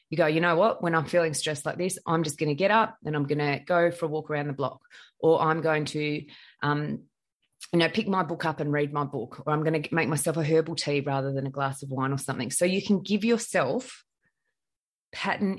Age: 20-39